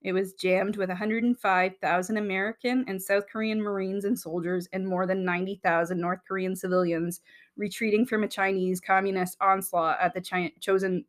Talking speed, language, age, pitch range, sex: 145 wpm, English, 20-39, 175-200 Hz, female